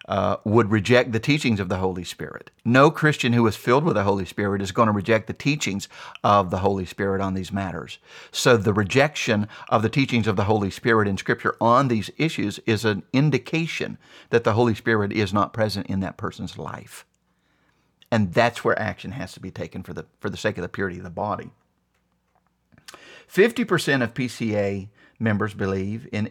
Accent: American